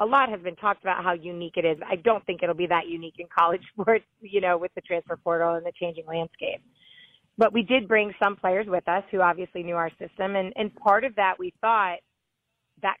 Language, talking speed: English, 235 wpm